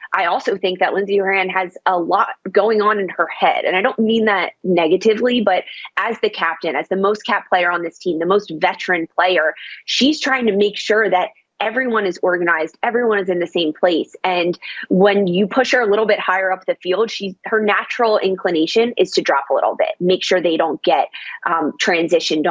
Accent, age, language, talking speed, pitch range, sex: American, 20-39, English, 215 wpm, 175-215 Hz, female